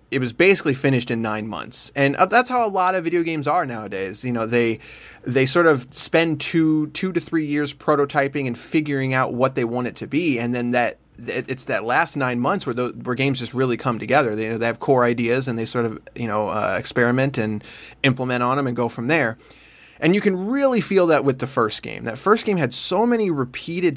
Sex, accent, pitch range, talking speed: male, American, 115-155 Hz, 240 wpm